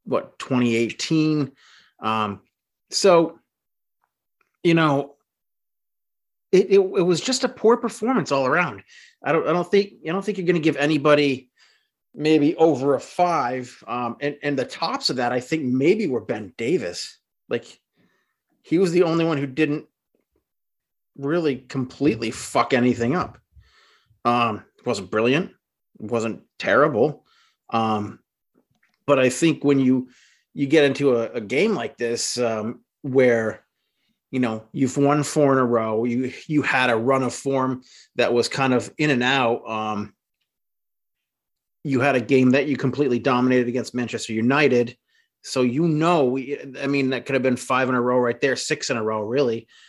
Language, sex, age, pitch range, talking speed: English, male, 30-49, 120-150 Hz, 165 wpm